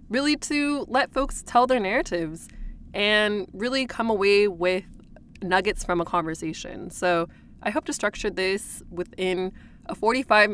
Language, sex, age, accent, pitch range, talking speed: English, female, 20-39, American, 175-210 Hz, 140 wpm